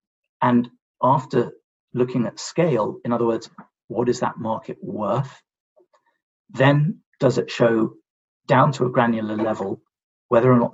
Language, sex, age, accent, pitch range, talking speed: English, male, 40-59, British, 120-155 Hz, 140 wpm